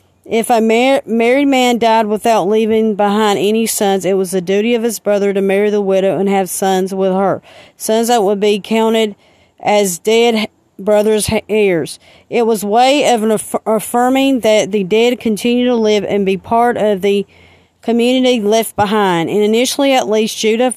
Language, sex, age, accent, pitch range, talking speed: English, female, 40-59, American, 205-240 Hz, 175 wpm